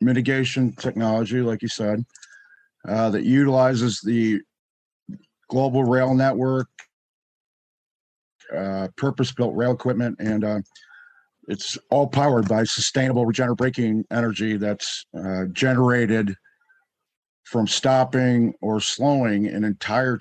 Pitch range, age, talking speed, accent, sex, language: 110-125 Hz, 50-69, 105 wpm, American, male, English